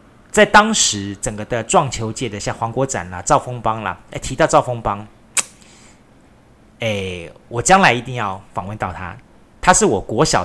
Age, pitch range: 30-49, 100-130 Hz